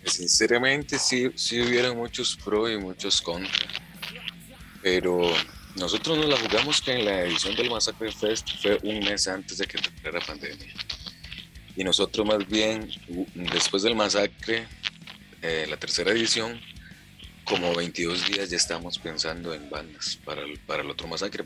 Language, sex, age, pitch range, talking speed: Spanish, male, 30-49, 85-110 Hz, 155 wpm